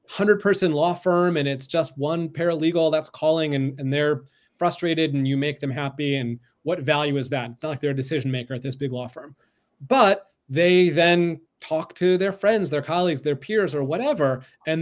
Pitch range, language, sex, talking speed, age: 140-175 Hz, English, male, 205 wpm, 30-49